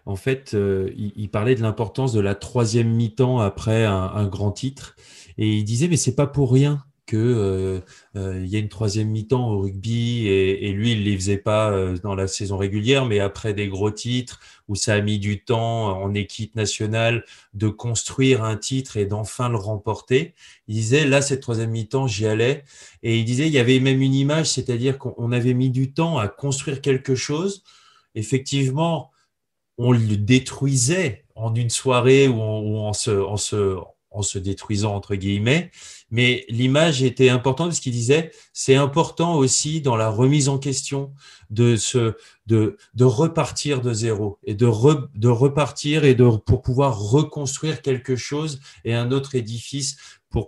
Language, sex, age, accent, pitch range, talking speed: French, male, 20-39, French, 105-135 Hz, 180 wpm